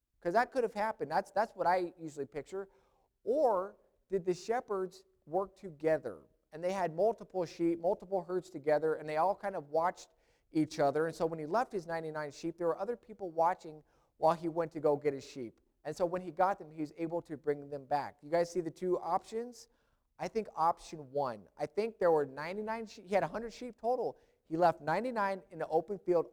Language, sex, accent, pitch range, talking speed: English, male, American, 155-195 Hz, 215 wpm